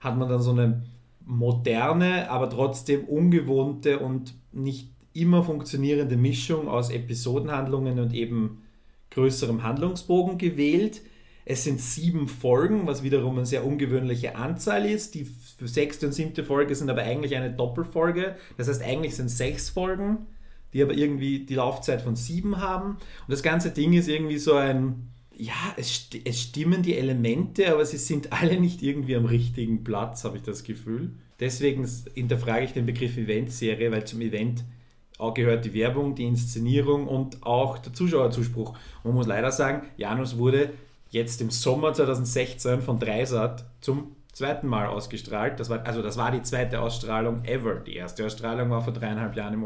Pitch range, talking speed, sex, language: 120-145 Hz, 160 wpm, male, German